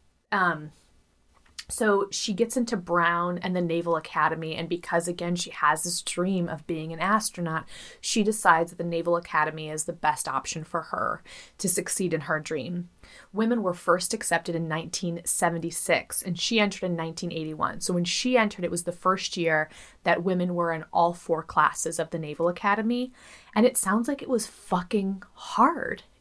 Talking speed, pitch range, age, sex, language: 175 wpm, 165-195 Hz, 20-39, female, English